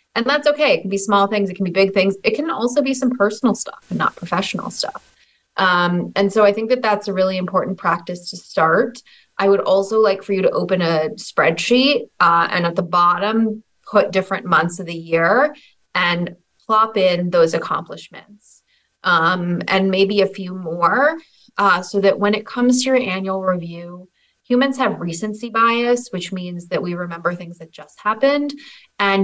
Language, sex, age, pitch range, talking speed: English, female, 20-39, 185-225 Hz, 190 wpm